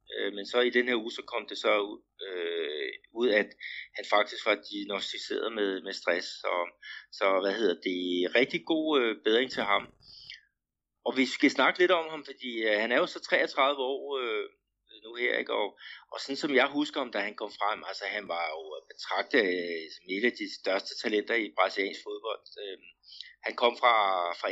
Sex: male